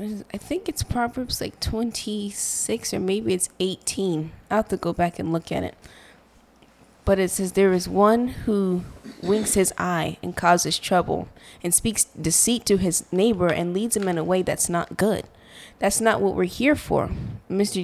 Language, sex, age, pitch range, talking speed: English, female, 20-39, 175-205 Hz, 180 wpm